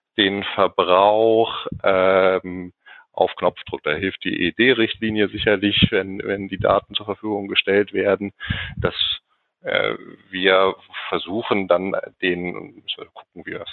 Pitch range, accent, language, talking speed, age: 85-100 Hz, German, German, 120 wpm, 40-59